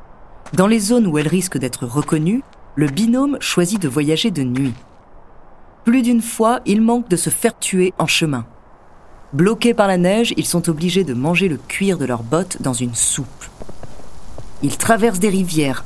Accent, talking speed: French, 180 wpm